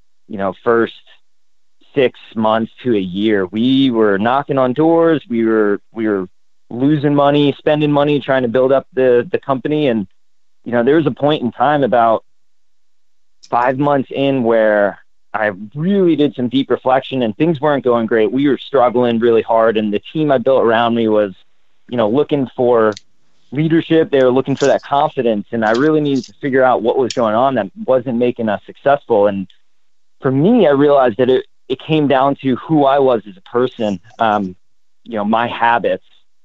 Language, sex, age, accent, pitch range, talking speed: English, male, 30-49, American, 110-140 Hz, 190 wpm